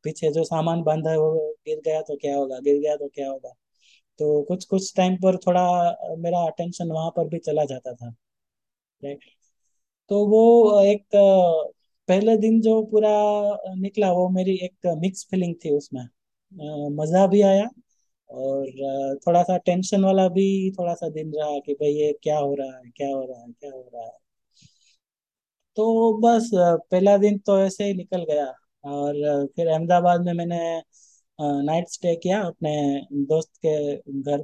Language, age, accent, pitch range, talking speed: English, 20-39, Indian, 145-190 Hz, 130 wpm